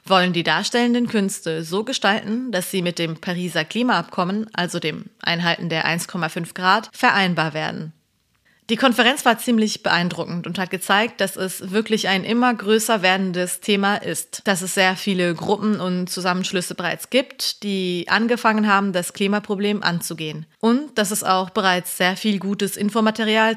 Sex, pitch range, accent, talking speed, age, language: female, 175-215 Hz, German, 155 wpm, 30-49, German